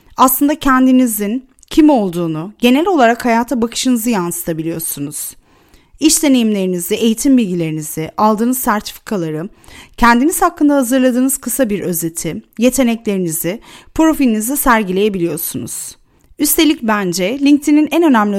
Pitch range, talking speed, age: 185-260 Hz, 95 wpm, 30-49